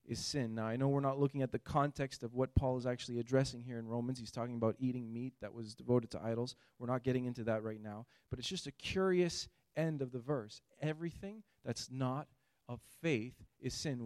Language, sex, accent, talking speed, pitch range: English, male, American, 225 wpm, 115-140 Hz